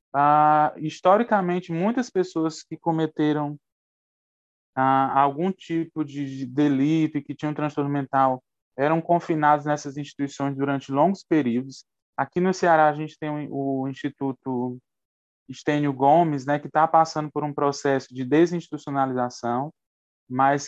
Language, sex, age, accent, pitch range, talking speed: Portuguese, male, 20-39, Brazilian, 135-170 Hz, 130 wpm